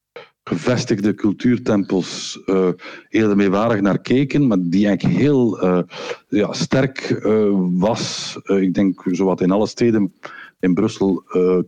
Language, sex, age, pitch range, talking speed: Dutch, male, 50-69, 90-105 Hz, 130 wpm